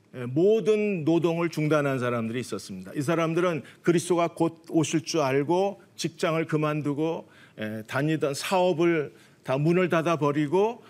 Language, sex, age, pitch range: Korean, male, 40-59, 145-190 Hz